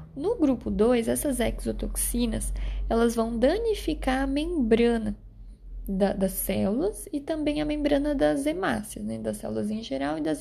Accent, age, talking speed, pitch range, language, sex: Brazilian, 10-29, 140 wpm, 190-255 Hz, Portuguese, female